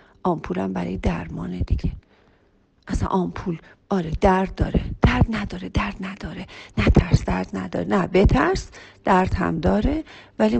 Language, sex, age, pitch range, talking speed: Persian, female, 40-59, 160-235 Hz, 130 wpm